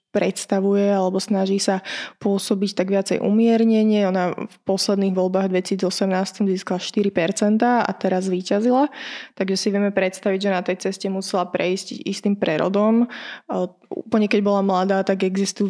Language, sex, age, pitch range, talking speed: Slovak, female, 20-39, 190-210 Hz, 135 wpm